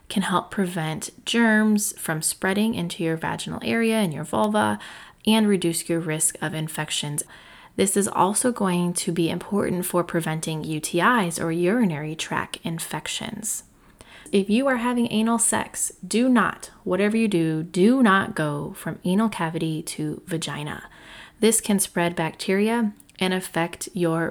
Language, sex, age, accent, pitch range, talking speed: English, female, 20-39, American, 170-220 Hz, 145 wpm